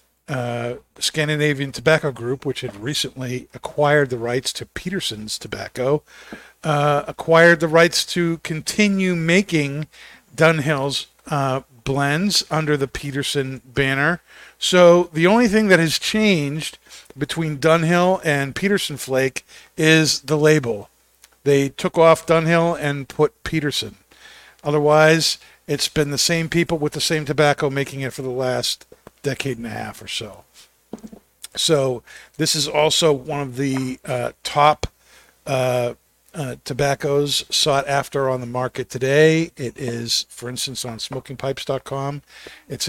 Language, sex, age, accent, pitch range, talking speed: English, male, 50-69, American, 130-155 Hz, 135 wpm